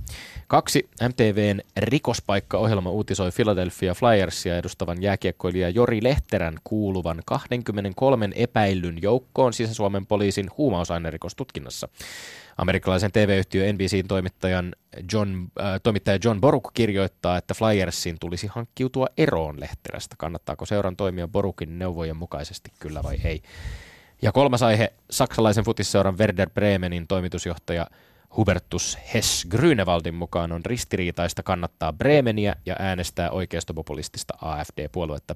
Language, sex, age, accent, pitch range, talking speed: Finnish, male, 20-39, native, 85-110 Hz, 105 wpm